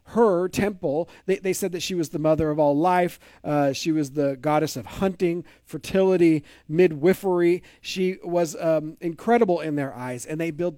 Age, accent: 40-59, American